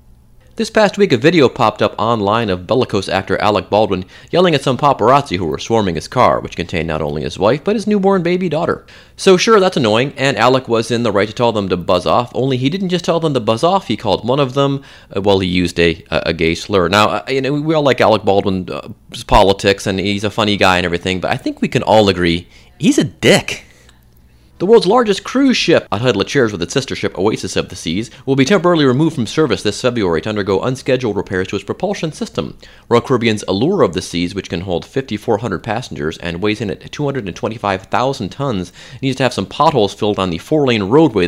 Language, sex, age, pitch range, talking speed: English, male, 30-49, 95-140 Hz, 230 wpm